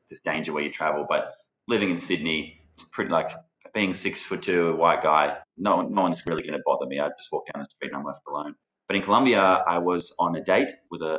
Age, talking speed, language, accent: 20-39, 245 wpm, English, Australian